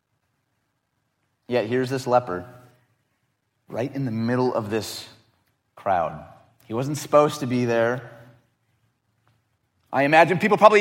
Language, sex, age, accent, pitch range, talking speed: English, male, 30-49, American, 120-155 Hz, 115 wpm